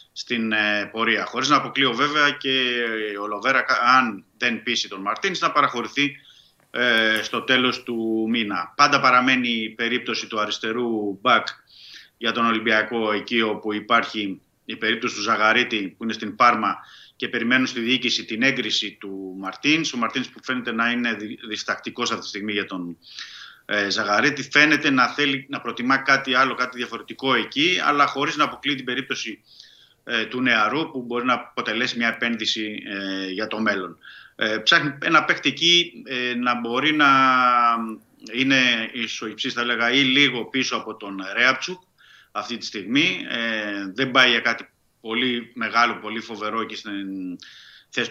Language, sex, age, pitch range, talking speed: Greek, male, 30-49, 110-130 Hz, 160 wpm